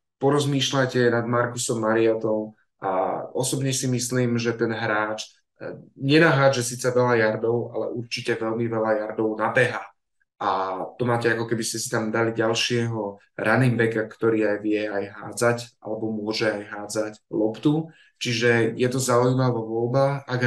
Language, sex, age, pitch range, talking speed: Slovak, male, 20-39, 110-125 Hz, 145 wpm